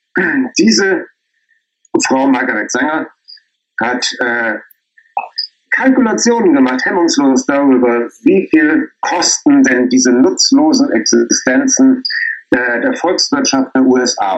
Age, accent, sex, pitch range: 50-69, German, male, 255-345 Hz